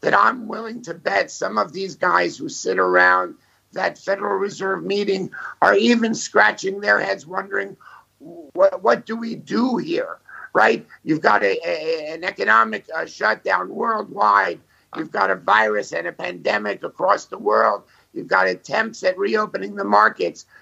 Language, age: German, 50-69